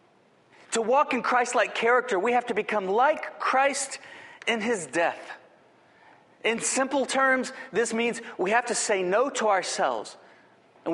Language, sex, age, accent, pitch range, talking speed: English, male, 40-59, American, 210-270 Hz, 150 wpm